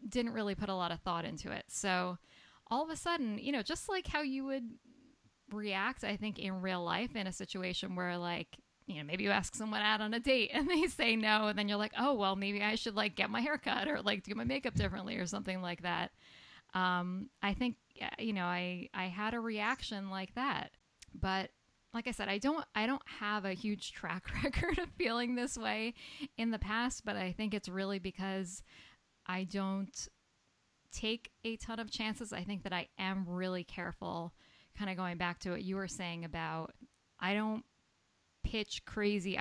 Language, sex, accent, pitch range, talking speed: English, female, American, 180-230 Hz, 205 wpm